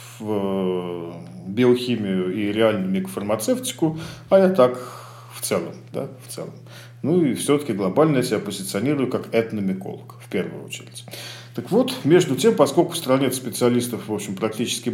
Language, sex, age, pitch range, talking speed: Russian, male, 40-59, 110-155 Hz, 145 wpm